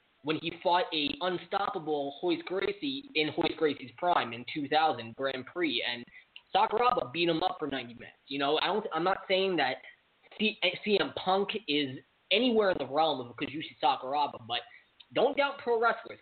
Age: 20-39